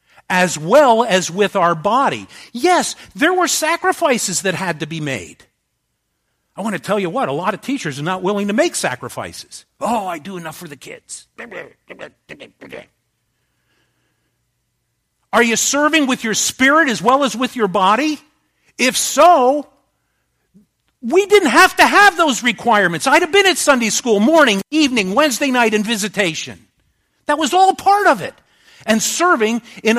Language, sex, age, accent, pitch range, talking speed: English, male, 50-69, American, 190-295 Hz, 160 wpm